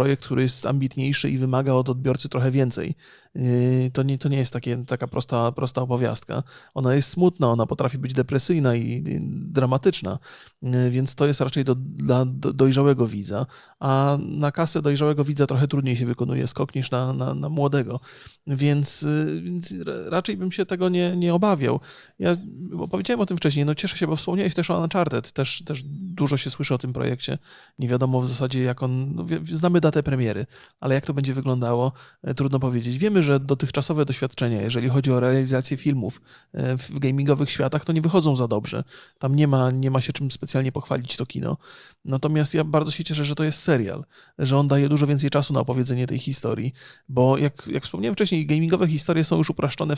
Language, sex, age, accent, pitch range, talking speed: Polish, male, 30-49, native, 130-150 Hz, 185 wpm